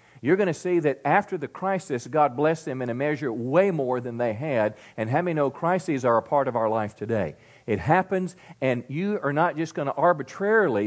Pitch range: 130-175 Hz